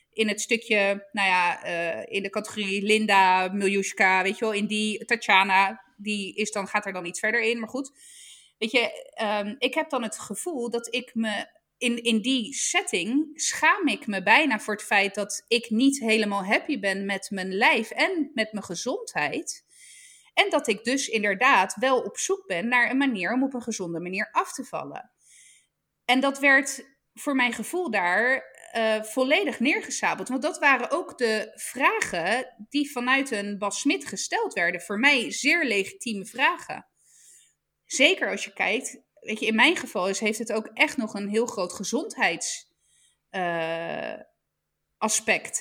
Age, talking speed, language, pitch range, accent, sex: 20-39, 170 wpm, Dutch, 200-270 Hz, Dutch, female